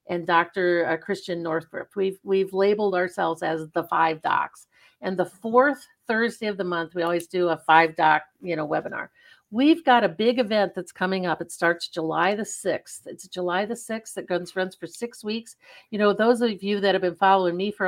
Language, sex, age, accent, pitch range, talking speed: English, female, 50-69, American, 175-215 Hz, 205 wpm